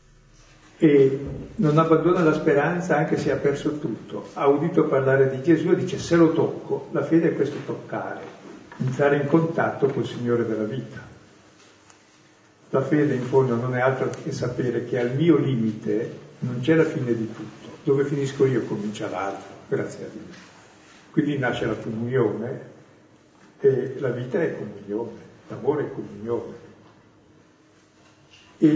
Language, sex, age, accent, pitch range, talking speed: Italian, male, 60-79, native, 115-155 Hz, 150 wpm